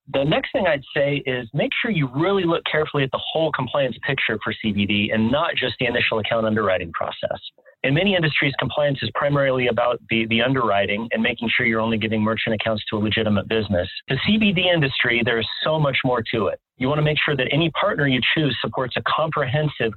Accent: American